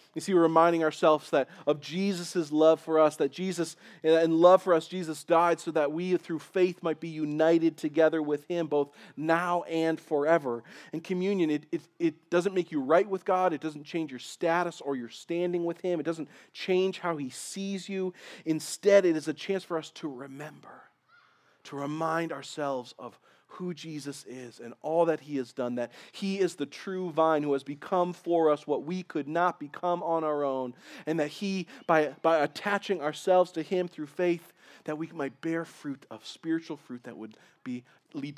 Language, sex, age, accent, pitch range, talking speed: English, male, 40-59, American, 145-180 Hz, 195 wpm